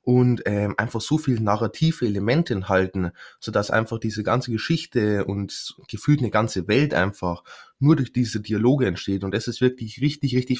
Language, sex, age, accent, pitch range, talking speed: German, male, 20-39, German, 110-140 Hz, 170 wpm